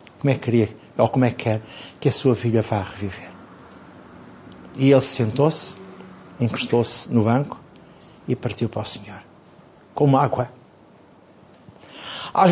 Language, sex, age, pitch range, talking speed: Portuguese, male, 50-69, 120-195 Hz, 140 wpm